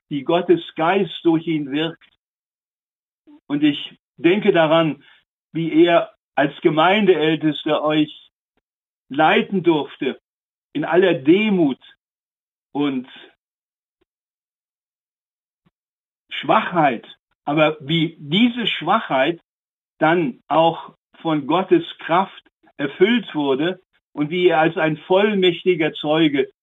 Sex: male